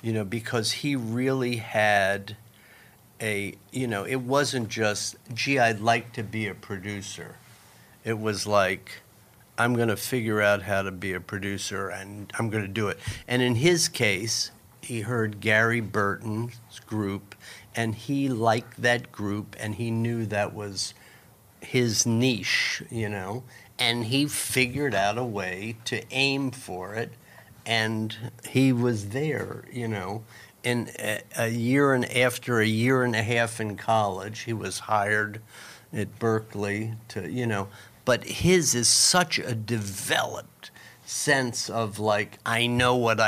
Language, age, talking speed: English, 50-69, 155 wpm